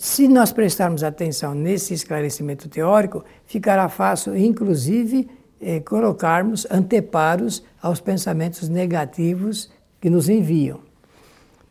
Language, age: Portuguese, 60-79